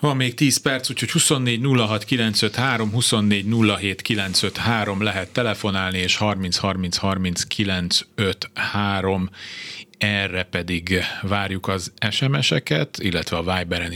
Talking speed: 95 wpm